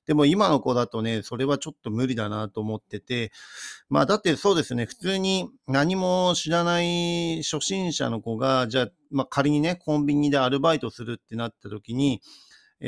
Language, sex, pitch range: Japanese, male, 115-140 Hz